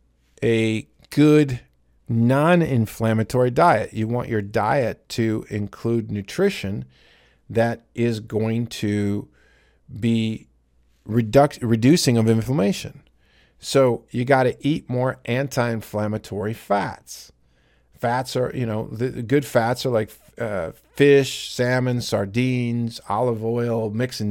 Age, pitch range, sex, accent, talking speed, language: 40-59, 110-130 Hz, male, American, 105 wpm, English